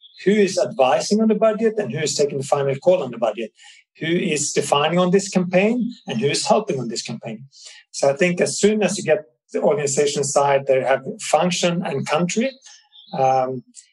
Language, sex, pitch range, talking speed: English, male, 135-195 Hz, 200 wpm